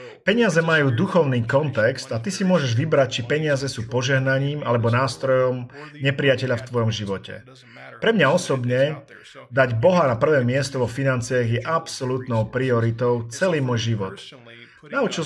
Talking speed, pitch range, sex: 140 wpm, 115-145 Hz, male